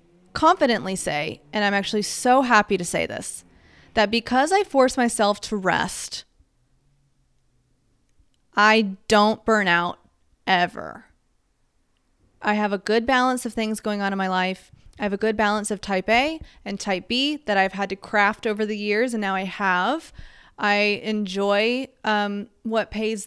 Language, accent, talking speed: English, American, 160 wpm